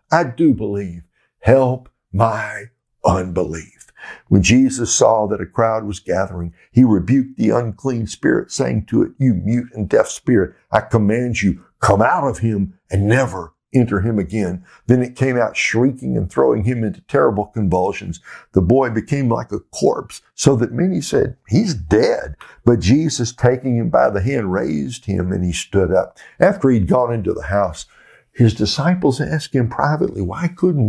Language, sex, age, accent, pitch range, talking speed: English, male, 60-79, American, 100-125 Hz, 170 wpm